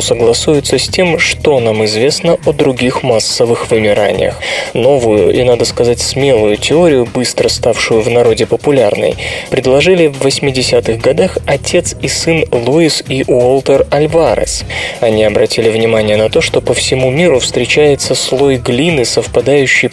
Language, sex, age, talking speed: Russian, male, 20-39, 135 wpm